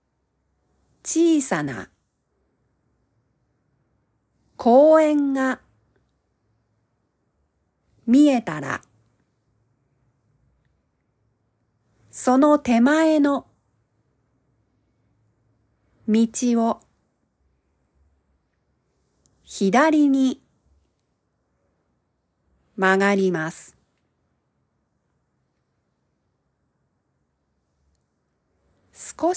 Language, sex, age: Japanese, female, 40-59